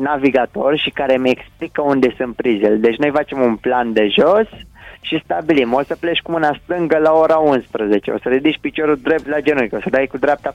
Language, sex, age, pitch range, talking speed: Romanian, male, 20-39, 125-165 Hz, 215 wpm